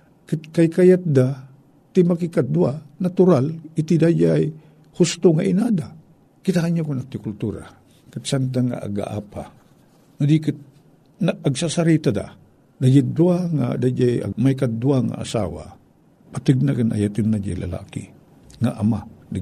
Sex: male